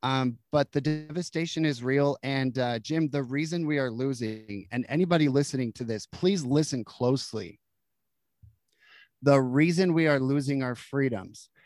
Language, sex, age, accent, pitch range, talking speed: English, male, 30-49, American, 130-165 Hz, 150 wpm